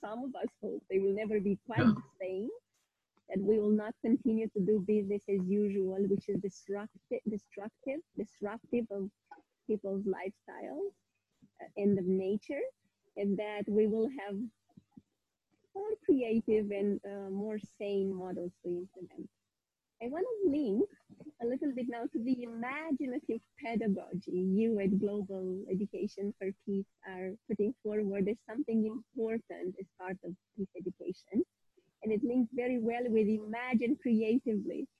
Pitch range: 200-250 Hz